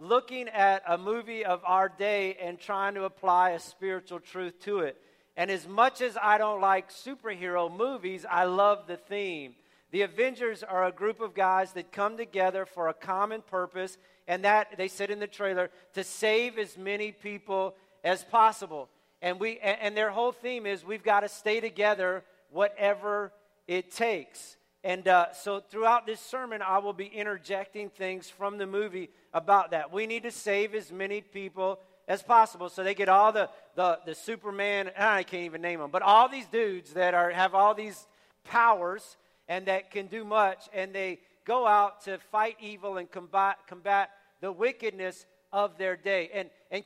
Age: 50-69